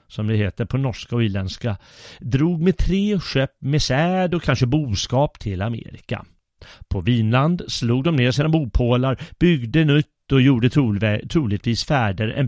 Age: 40-59